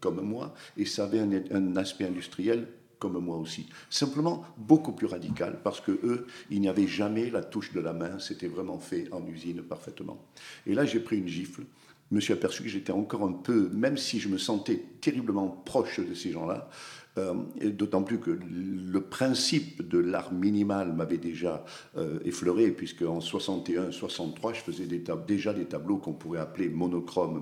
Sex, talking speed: male, 180 wpm